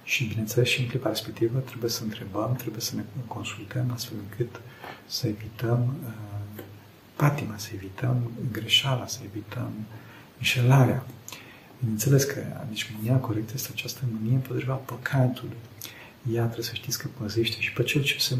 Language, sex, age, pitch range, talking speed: Romanian, male, 50-69, 110-130 Hz, 150 wpm